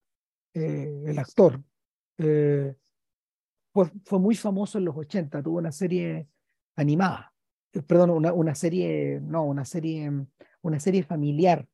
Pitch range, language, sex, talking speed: 150-190 Hz, Spanish, male, 135 wpm